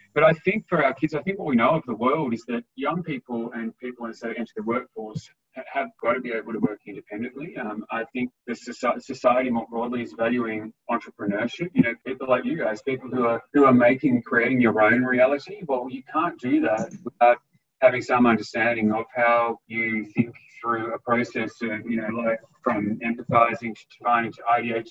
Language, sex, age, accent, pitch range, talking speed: English, male, 30-49, Australian, 115-130 Hz, 205 wpm